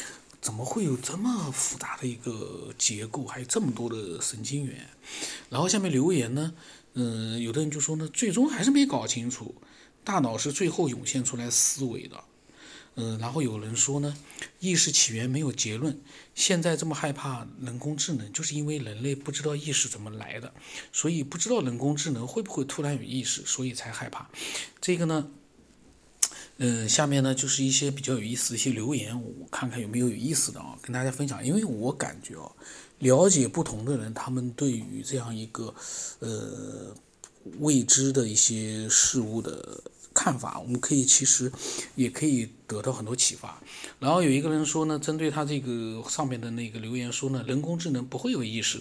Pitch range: 120-150 Hz